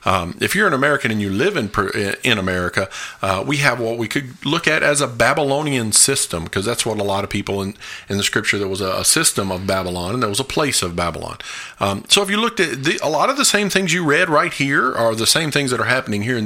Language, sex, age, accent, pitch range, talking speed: English, male, 40-59, American, 105-140 Hz, 265 wpm